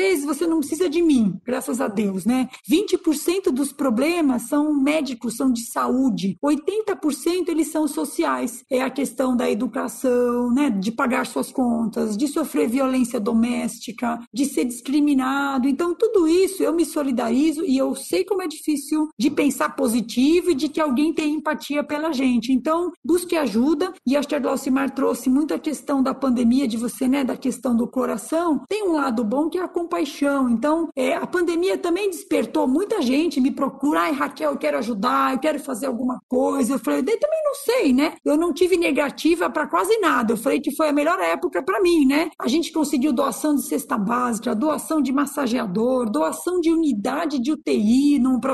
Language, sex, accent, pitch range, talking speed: Portuguese, female, Brazilian, 255-325 Hz, 180 wpm